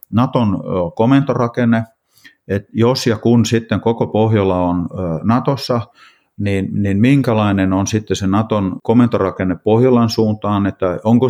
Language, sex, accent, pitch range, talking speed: Finnish, male, native, 95-110 Hz, 120 wpm